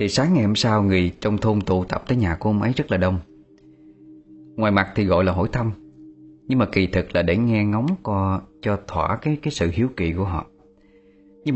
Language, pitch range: Vietnamese, 90-130 Hz